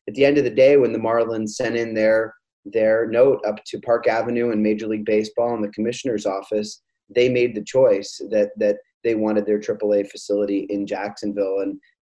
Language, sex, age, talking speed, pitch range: English, male, 30-49, 200 wpm, 105-120 Hz